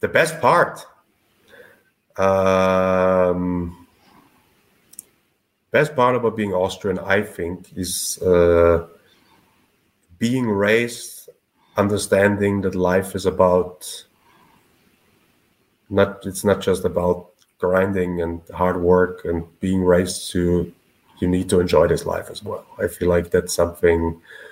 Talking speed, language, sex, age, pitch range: 110 wpm, English, male, 30-49, 90-100 Hz